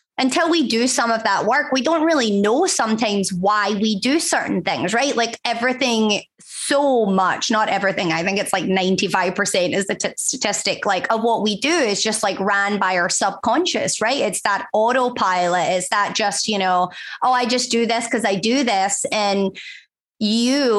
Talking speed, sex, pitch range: 185 wpm, female, 200-250 Hz